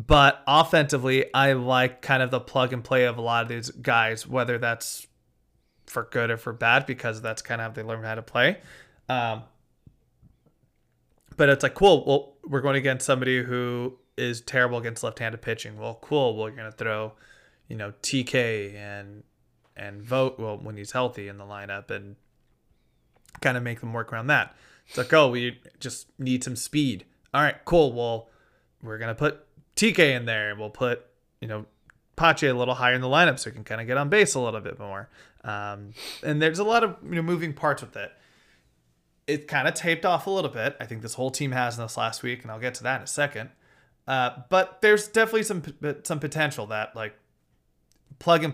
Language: English